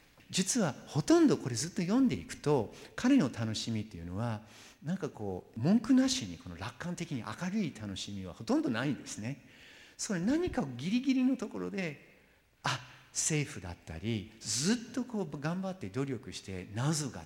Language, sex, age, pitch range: Japanese, male, 50-69, 105-170 Hz